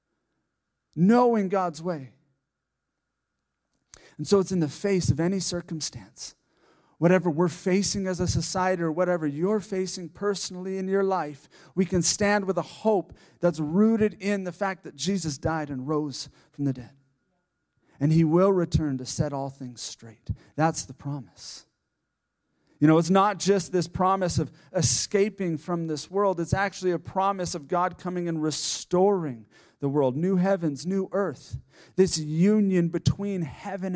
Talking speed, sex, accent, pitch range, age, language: 155 wpm, male, American, 145-190 Hz, 40-59, English